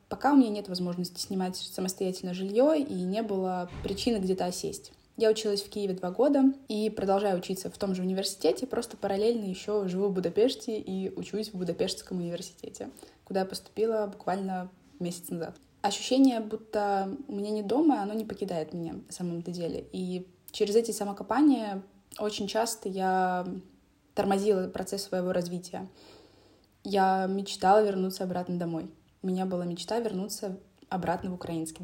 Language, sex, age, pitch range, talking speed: Russian, female, 20-39, 180-215 Hz, 155 wpm